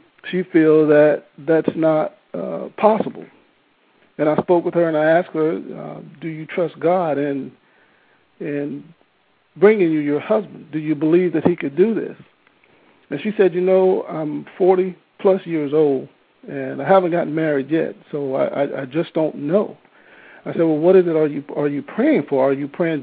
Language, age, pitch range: English, 50-69, 155-190 Hz